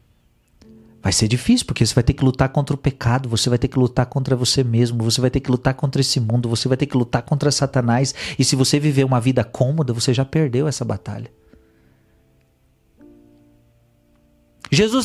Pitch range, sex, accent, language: 120-165 Hz, male, Brazilian, Portuguese